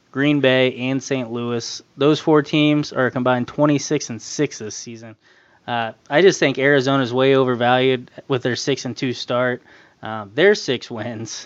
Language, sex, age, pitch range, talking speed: English, male, 20-39, 125-140 Hz, 170 wpm